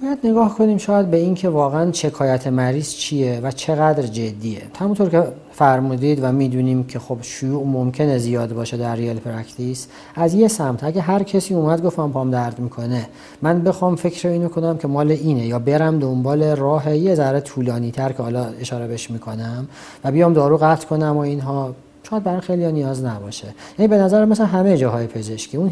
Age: 40-59